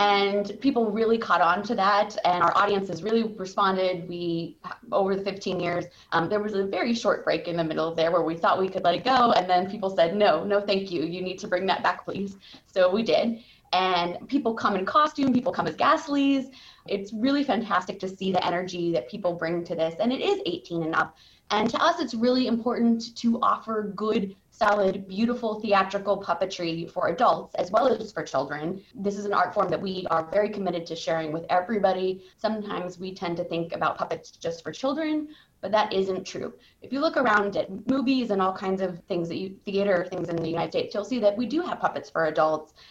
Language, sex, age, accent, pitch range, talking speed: English, female, 20-39, American, 175-220 Hz, 220 wpm